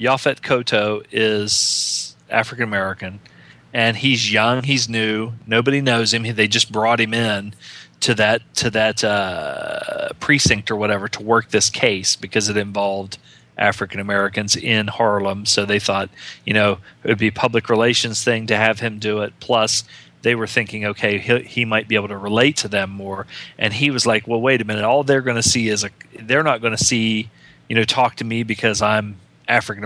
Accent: American